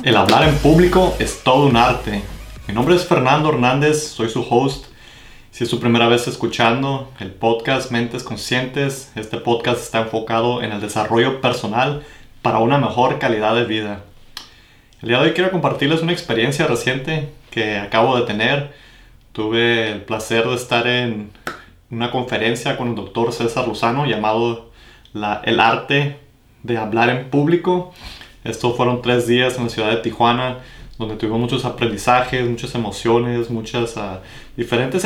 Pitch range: 115-130 Hz